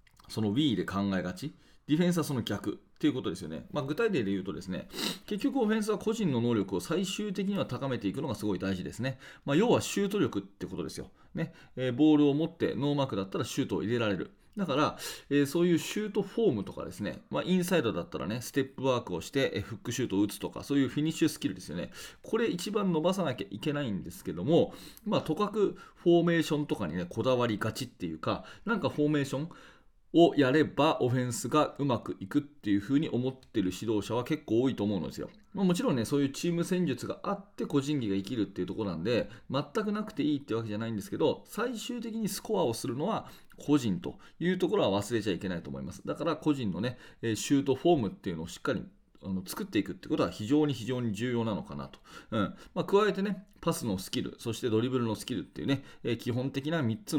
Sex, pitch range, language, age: male, 110-170 Hz, Japanese, 30-49